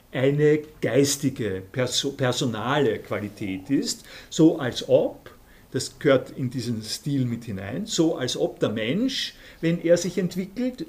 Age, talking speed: 50-69, 130 wpm